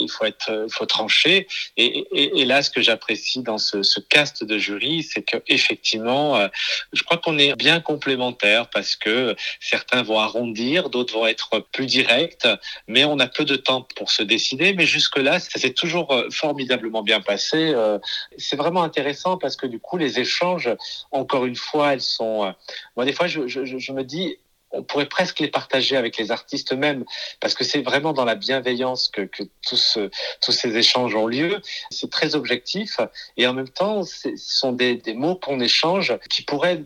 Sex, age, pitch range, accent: male, 40-59, 115-155 Hz, French